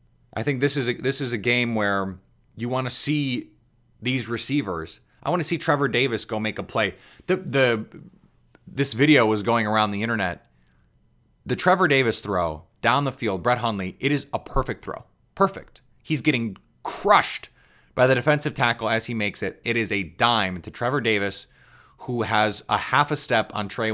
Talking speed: 190 wpm